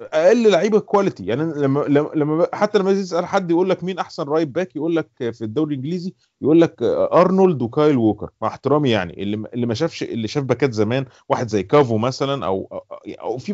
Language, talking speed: Arabic, 190 wpm